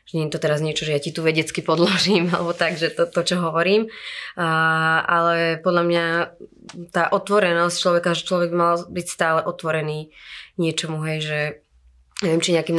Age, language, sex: 20-39, Slovak, female